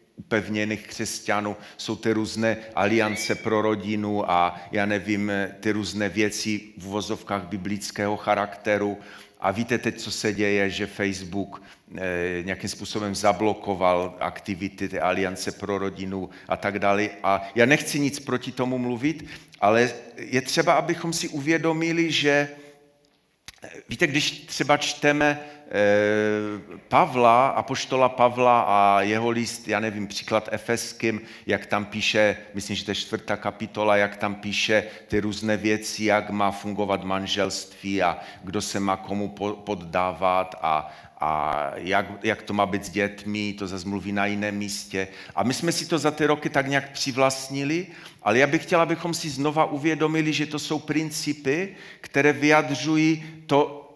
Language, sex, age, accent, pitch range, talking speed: Czech, male, 40-59, native, 100-145 Hz, 145 wpm